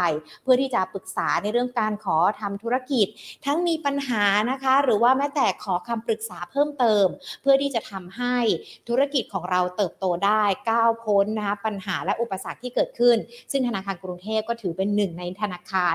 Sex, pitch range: female, 190-240 Hz